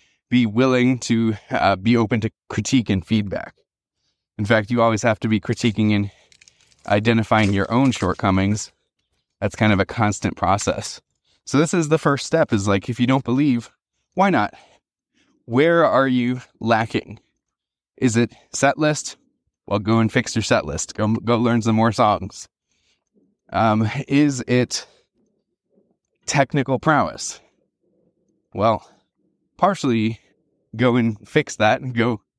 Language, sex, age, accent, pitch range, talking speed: English, male, 20-39, American, 105-125 Hz, 145 wpm